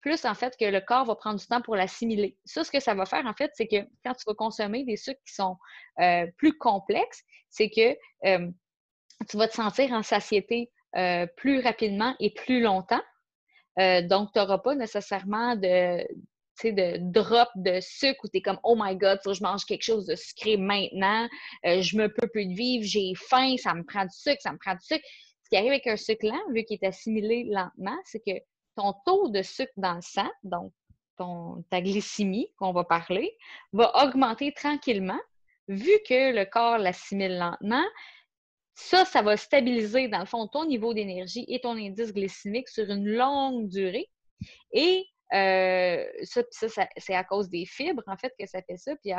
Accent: Canadian